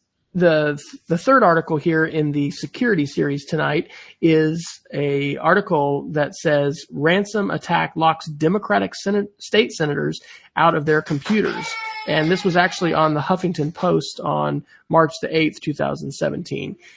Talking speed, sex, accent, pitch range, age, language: 140 wpm, male, American, 145-180 Hz, 40-59, English